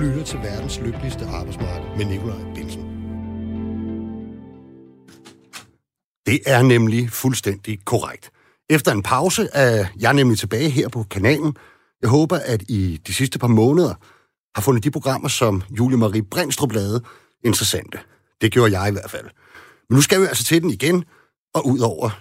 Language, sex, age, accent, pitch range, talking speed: Danish, male, 60-79, native, 100-140 Hz, 155 wpm